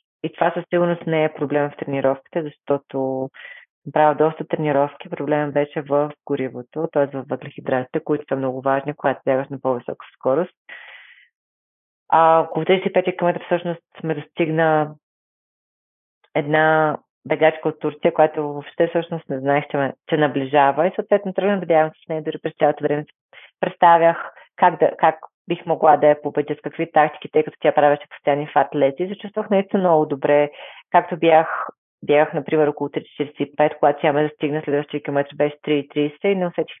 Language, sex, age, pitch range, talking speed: Bulgarian, female, 30-49, 145-165 Hz, 165 wpm